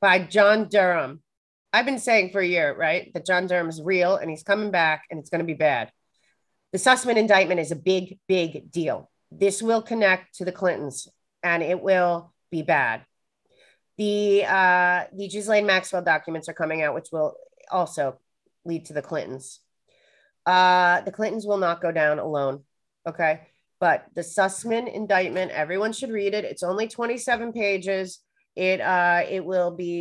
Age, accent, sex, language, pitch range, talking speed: 30-49, American, female, English, 160-195 Hz, 170 wpm